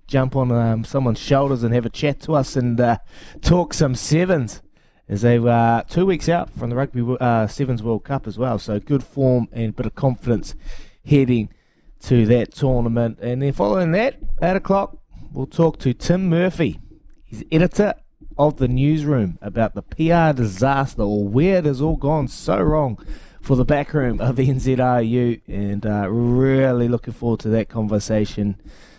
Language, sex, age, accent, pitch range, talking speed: English, male, 20-39, Australian, 110-145 Hz, 175 wpm